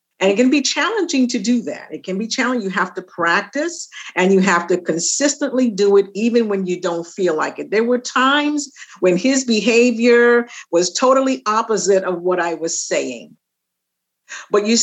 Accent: American